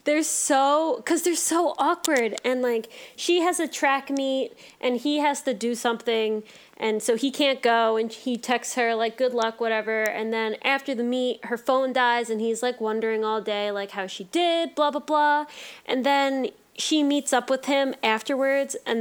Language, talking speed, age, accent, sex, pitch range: English, 195 wpm, 20-39, American, female, 220-270 Hz